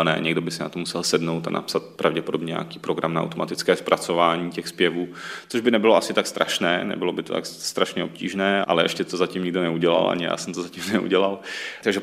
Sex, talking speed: male, 215 wpm